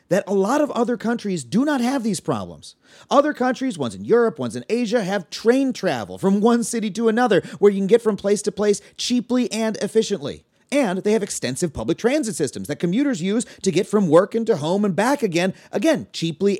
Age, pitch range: 30-49, 165-230 Hz